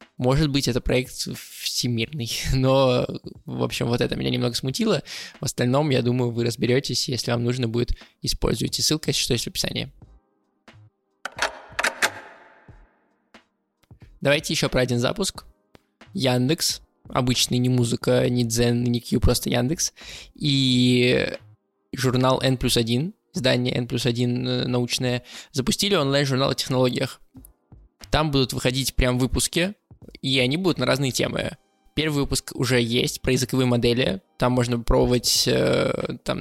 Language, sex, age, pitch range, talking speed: Russian, male, 20-39, 120-135 Hz, 130 wpm